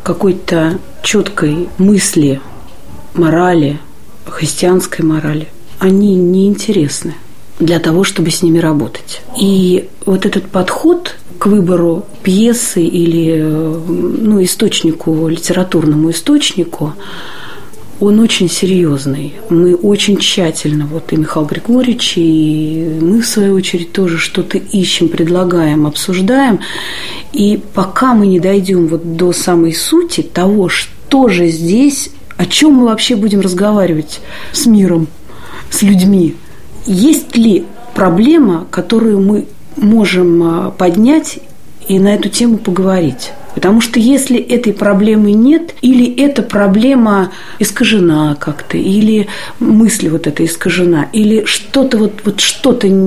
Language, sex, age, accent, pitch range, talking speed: Russian, female, 40-59, native, 170-215 Hz, 120 wpm